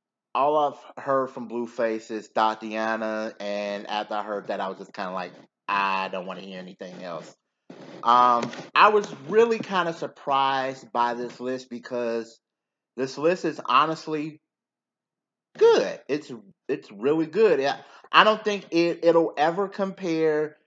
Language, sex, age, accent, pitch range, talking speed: English, male, 30-49, American, 120-165 Hz, 155 wpm